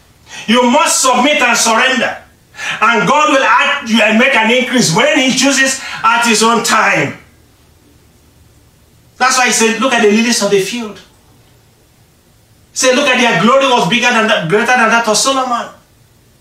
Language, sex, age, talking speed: English, male, 40-59, 170 wpm